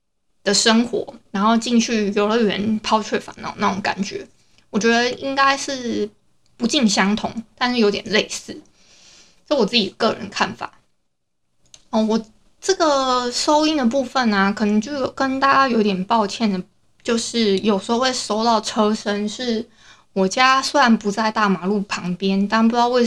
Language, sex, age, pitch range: Chinese, female, 20-39, 205-245 Hz